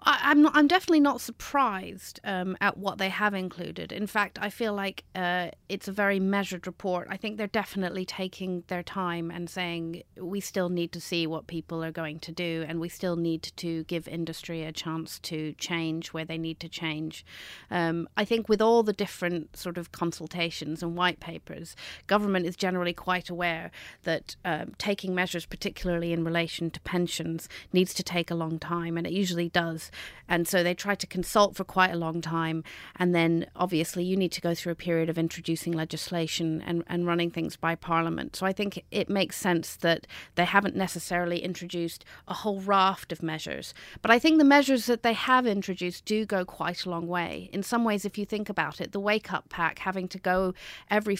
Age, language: 30-49, English